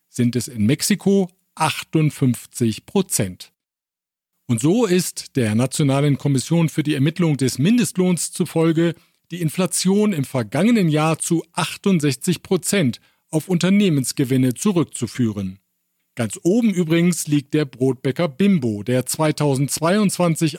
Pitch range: 130-175 Hz